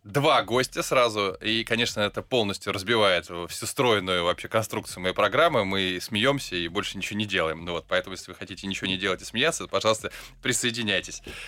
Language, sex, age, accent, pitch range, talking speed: Russian, male, 20-39, native, 95-140 Hz, 185 wpm